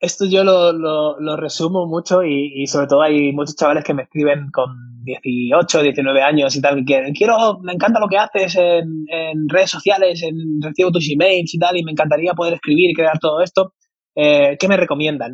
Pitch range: 145-170 Hz